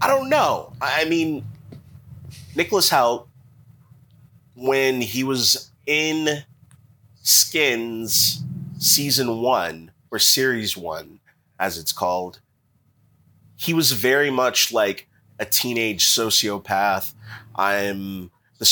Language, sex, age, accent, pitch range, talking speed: English, male, 30-49, American, 100-130 Hz, 95 wpm